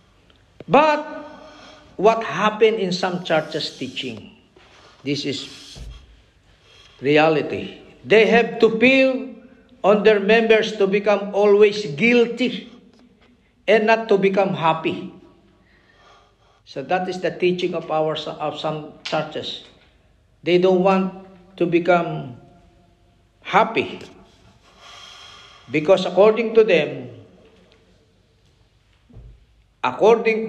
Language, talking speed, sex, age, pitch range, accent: Filipino, 95 wpm, male, 50-69, 140-210 Hz, native